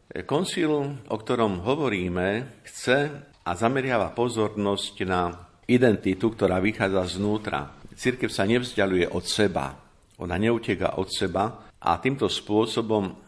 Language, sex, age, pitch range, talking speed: Slovak, male, 50-69, 90-110 Hz, 115 wpm